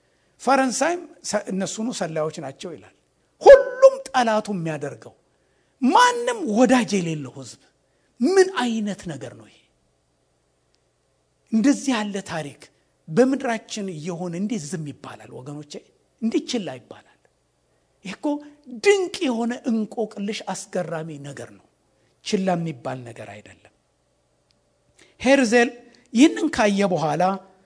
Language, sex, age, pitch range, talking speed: English, male, 60-79, 180-270 Hz, 75 wpm